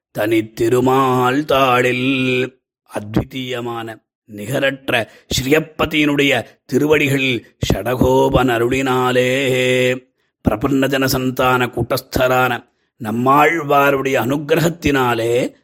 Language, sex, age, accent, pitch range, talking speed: Tamil, male, 30-49, native, 115-135 Hz, 45 wpm